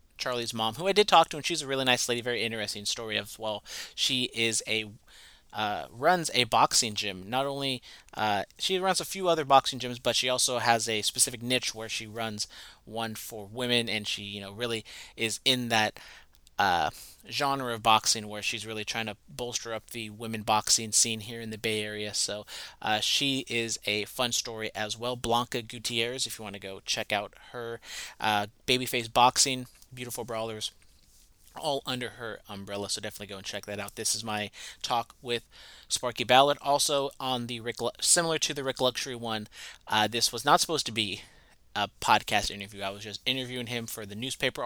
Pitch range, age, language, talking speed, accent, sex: 110-130 Hz, 30-49, English, 200 wpm, American, male